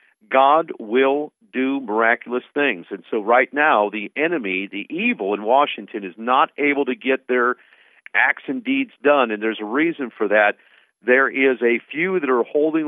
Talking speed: 175 wpm